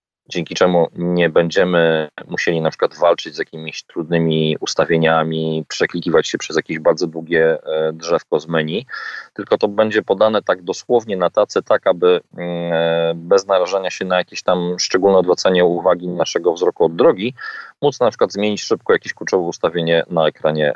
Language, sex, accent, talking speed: Polish, male, native, 155 wpm